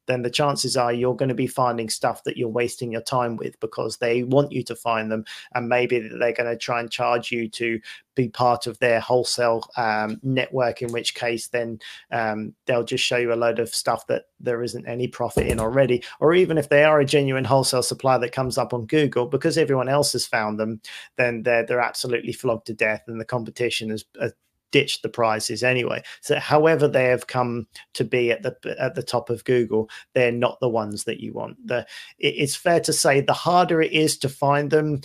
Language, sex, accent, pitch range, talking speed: English, male, British, 115-130 Hz, 220 wpm